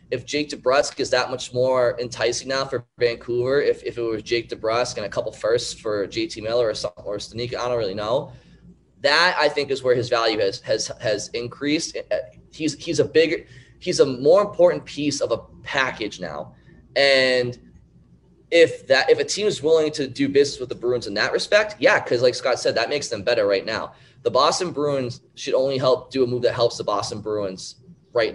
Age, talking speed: 20-39, 205 wpm